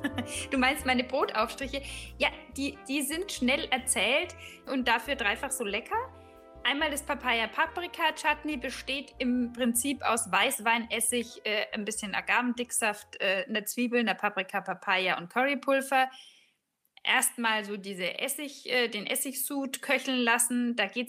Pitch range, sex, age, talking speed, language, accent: 205-260 Hz, female, 10-29, 130 wpm, German, German